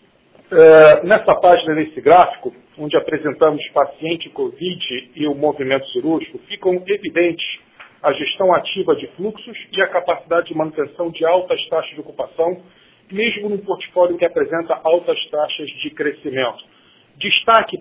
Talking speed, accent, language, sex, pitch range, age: 135 wpm, Brazilian, Portuguese, male, 150-195 Hz, 50-69